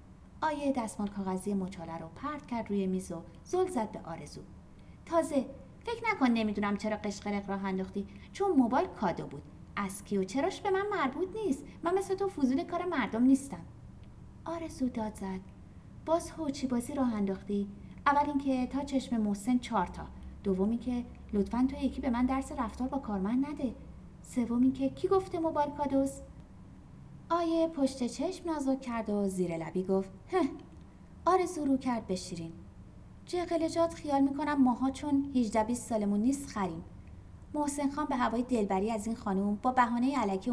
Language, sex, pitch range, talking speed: Persian, female, 200-295 Hz, 165 wpm